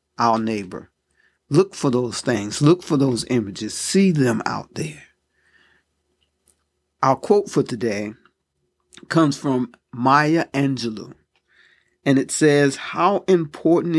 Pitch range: 115-140 Hz